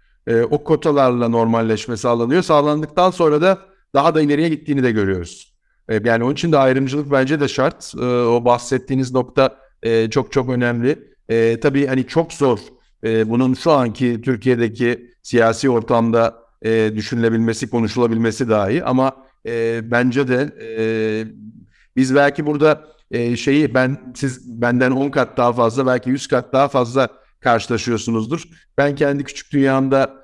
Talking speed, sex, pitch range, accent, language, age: 125 wpm, male, 120-150 Hz, native, Turkish, 60-79